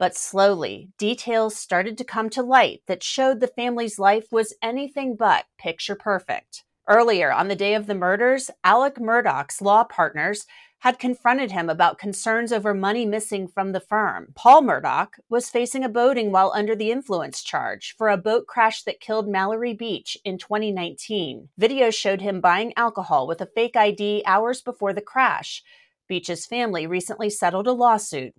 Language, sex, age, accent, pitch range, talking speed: English, female, 30-49, American, 190-235 Hz, 170 wpm